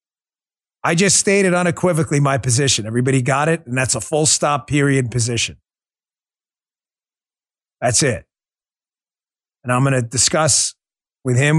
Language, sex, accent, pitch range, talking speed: English, male, American, 125-155 Hz, 130 wpm